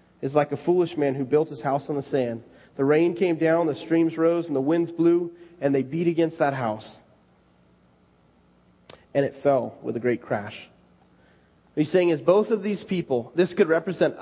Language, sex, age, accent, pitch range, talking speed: English, male, 30-49, American, 135-180 Hz, 200 wpm